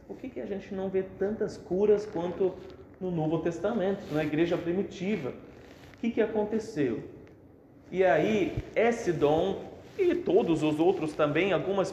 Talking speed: 150 wpm